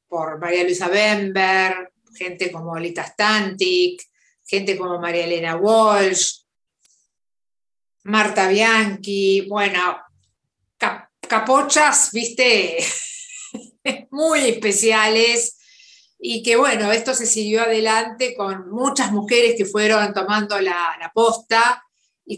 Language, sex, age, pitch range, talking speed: Spanish, female, 50-69, 190-230 Hz, 100 wpm